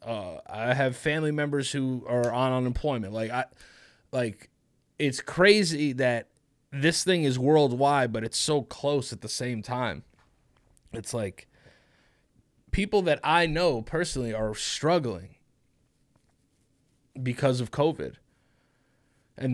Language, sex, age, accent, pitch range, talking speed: English, male, 20-39, American, 120-155 Hz, 120 wpm